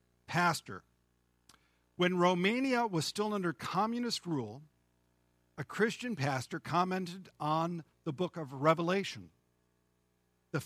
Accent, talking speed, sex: American, 100 wpm, male